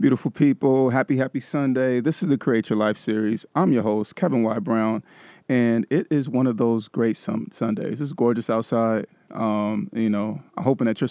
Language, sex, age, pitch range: English, male, 30-49, 110-130 Hz